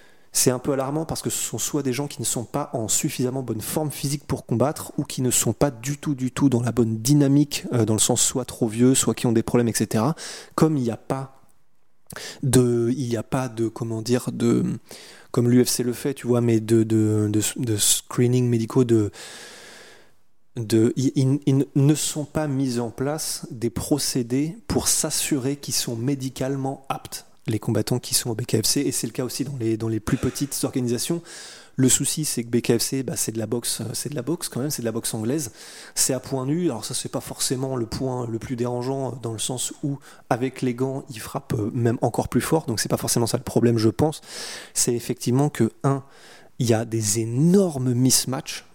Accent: French